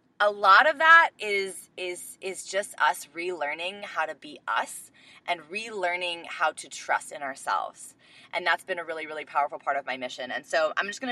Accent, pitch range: American, 165-210 Hz